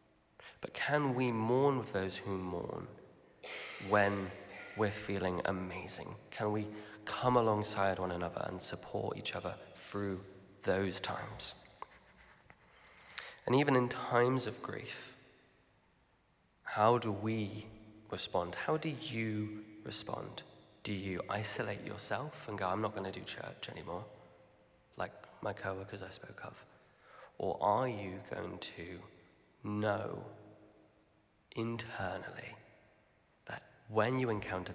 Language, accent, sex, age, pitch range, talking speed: English, British, male, 20-39, 95-125 Hz, 120 wpm